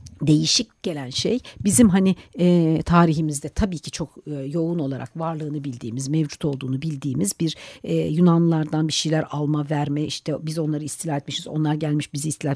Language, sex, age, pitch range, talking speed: Turkish, female, 60-79, 140-180 Hz, 165 wpm